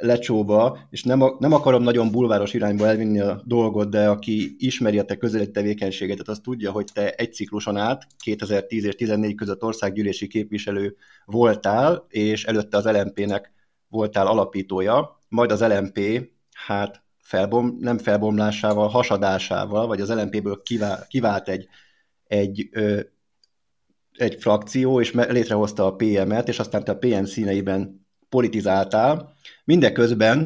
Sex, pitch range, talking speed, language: male, 105-120 Hz, 135 wpm, Hungarian